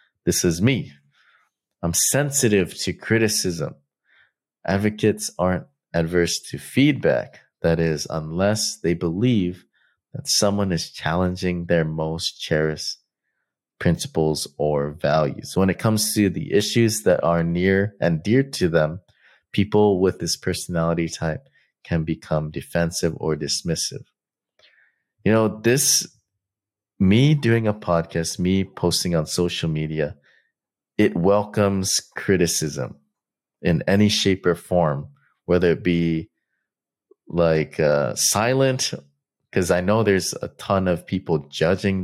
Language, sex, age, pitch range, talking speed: English, male, 30-49, 80-105 Hz, 120 wpm